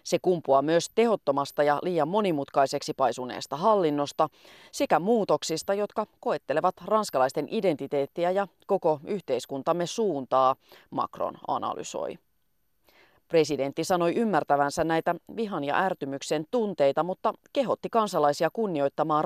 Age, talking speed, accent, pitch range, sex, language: 30-49, 105 wpm, native, 140-195 Hz, female, Finnish